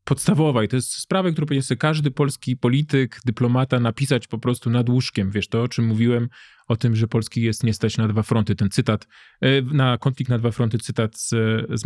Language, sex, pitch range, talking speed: Polish, male, 115-135 Hz, 210 wpm